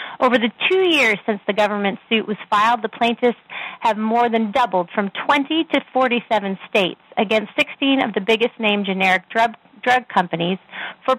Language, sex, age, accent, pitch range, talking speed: English, female, 30-49, American, 200-250 Hz, 165 wpm